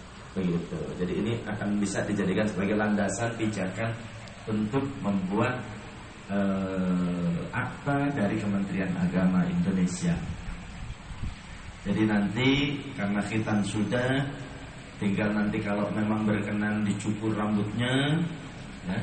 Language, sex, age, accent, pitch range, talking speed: Indonesian, male, 30-49, native, 100-135 Hz, 95 wpm